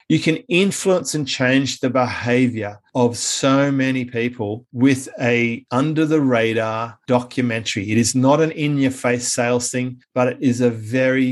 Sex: male